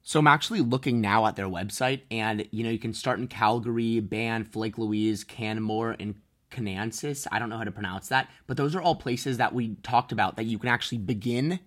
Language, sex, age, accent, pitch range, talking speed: English, male, 20-39, American, 105-125 Hz, 220 wpm